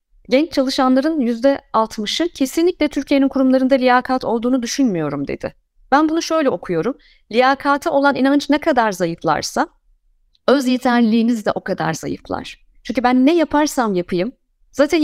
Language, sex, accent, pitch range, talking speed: Turkish, female, native, 205-275 Hz, 130 wpm